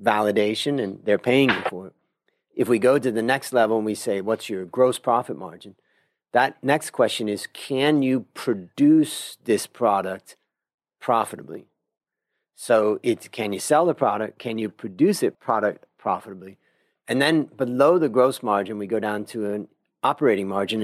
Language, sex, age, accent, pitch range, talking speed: English, male, 40-59, American, 100-125 Hz, 165 wpm